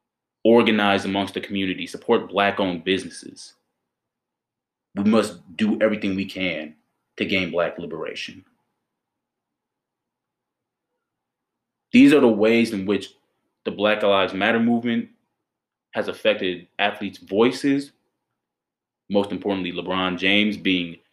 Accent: American